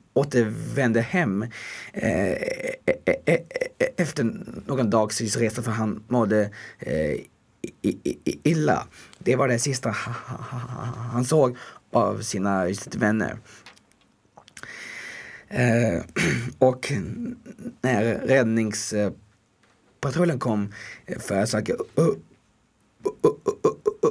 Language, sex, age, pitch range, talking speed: Swedish, male, 20-39, 110-145 Hz, 100 wpm